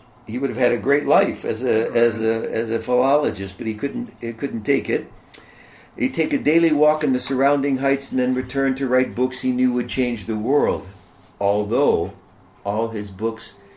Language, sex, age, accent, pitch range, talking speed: English, male, 60-79, American, 100-130 Hz, 200 wpm